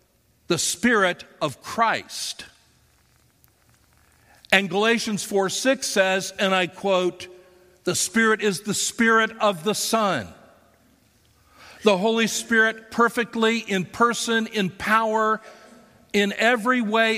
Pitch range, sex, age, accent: 135-210 Hz, male, 50-69, American